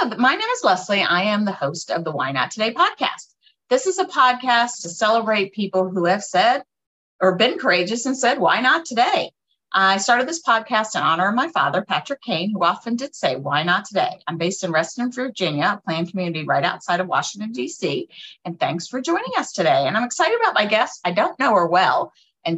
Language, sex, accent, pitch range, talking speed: English, female, American, 175-240 Hz, 215 wpm